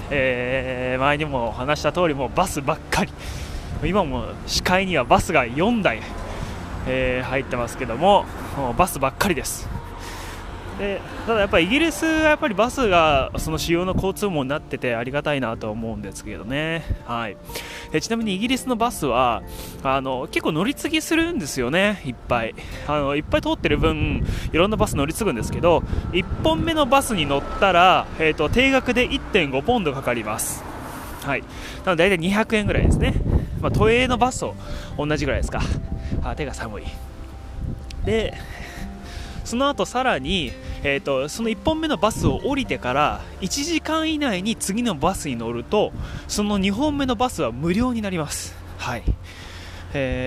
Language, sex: Japanese, male